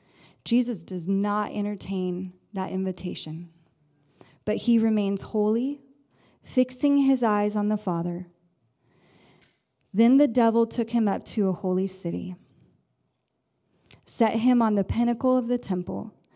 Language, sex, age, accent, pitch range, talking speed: English, female, 30-49, American, 195-240 Hz, 125 wpm